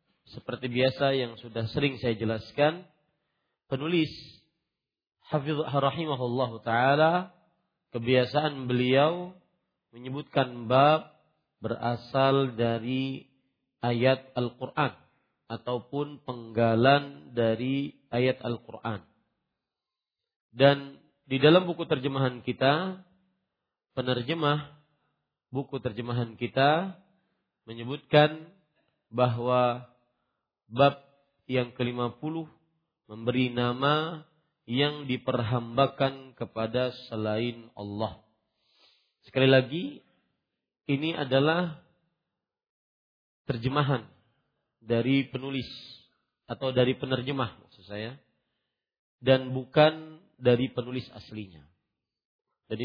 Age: 40-59